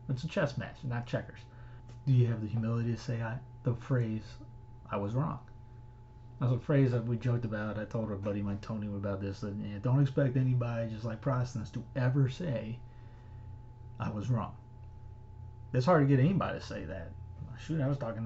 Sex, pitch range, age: male, 115-135 Hz, 30-49